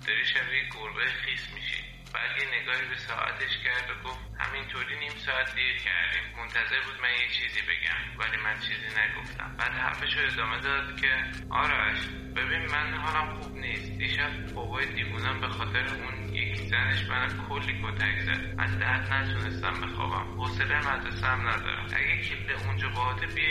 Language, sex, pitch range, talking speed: Persian, male, 95-110 Hz, 160 wpm